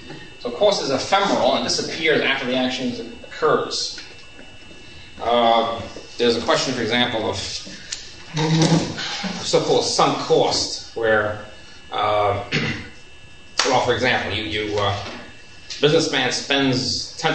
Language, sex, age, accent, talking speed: English, male, 30-49, American, 105 wpm